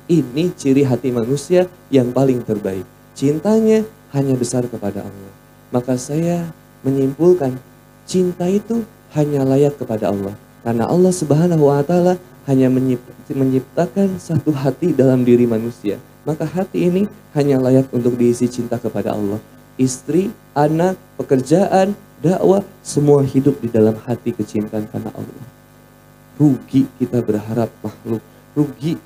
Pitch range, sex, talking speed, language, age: 120-155 Hz, male, 120 wpm, Indonesian, 20-39